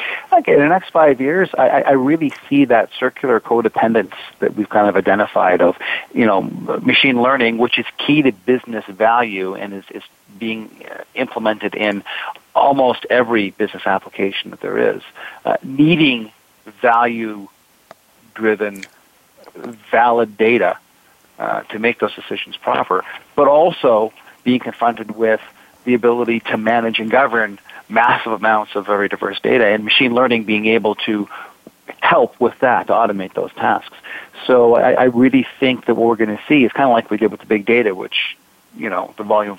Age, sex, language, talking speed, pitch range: 40-59, male, English, 165 wpm, 105-125 Hz